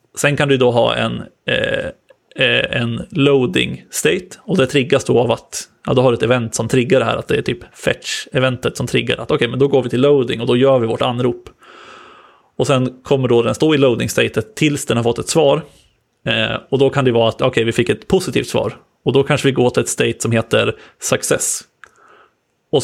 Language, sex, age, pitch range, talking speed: Swedish, male, 30-49, 115-140 Hz, 235 wpm